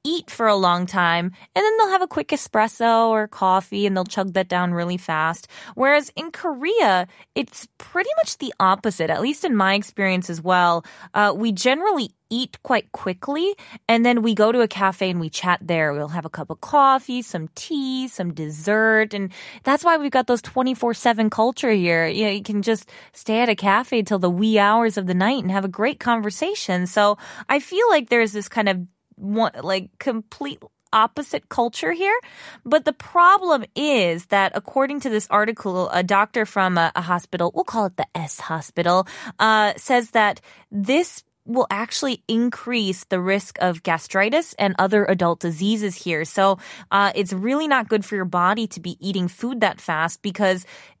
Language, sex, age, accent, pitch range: Korean, female, 20-39, American, 185-245 Hz